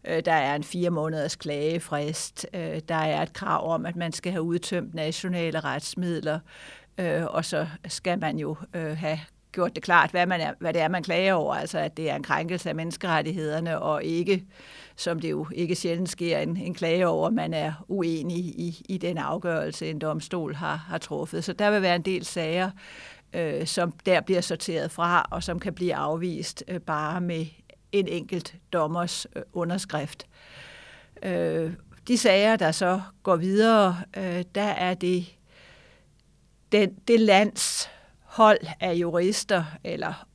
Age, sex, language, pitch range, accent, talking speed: 60-79, female, Danish, 165-185 Hz, native, 160 wpm